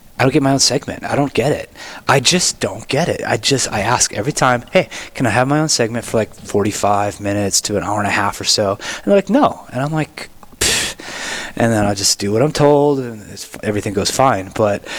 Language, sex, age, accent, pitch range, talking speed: English, male, 20-39, American, 105-135 Hz, 245 wpm